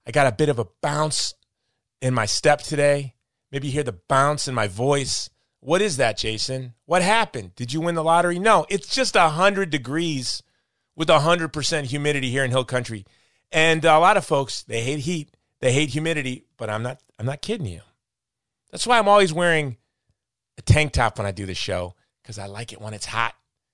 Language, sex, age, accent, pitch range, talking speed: English, male, 30-49, American, 115-155 Hz, 200 wpm